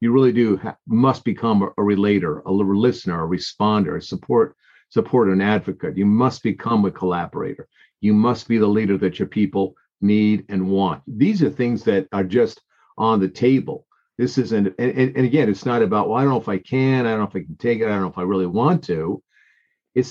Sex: male